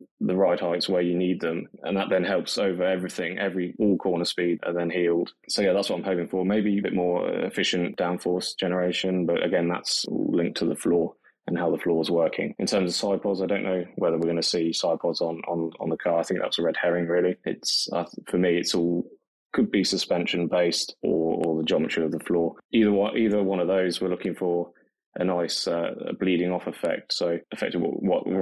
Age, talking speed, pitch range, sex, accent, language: 20-39, 225 wpm, 85-90 Hz, male, British, English